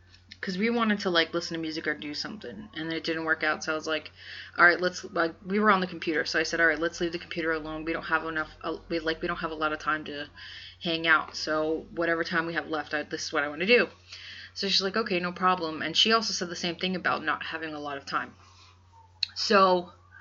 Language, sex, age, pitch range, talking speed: English, female, 20-39, 155-185 Hz, 265 wpm